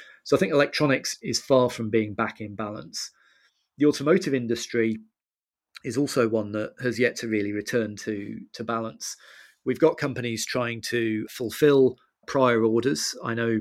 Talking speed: 160 wpm